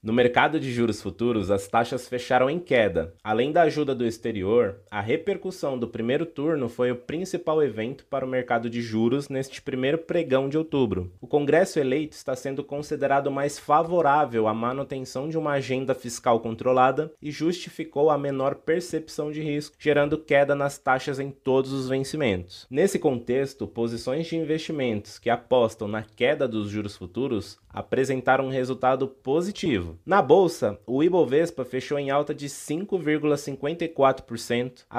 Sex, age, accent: male, 20-39, Brazilian